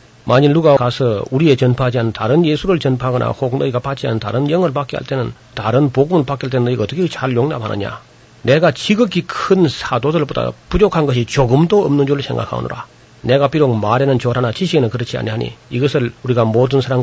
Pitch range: 120-145 Hz